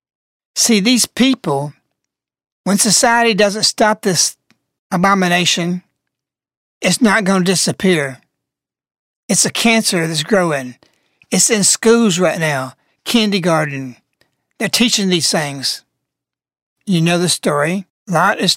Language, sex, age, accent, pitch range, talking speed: English, male, 60-79, American, 175-215 Hz, 115 wpm